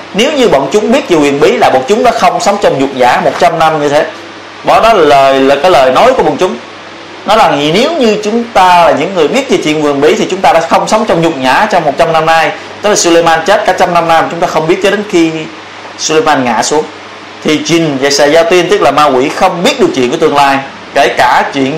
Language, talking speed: Vietnamese, 265 wpm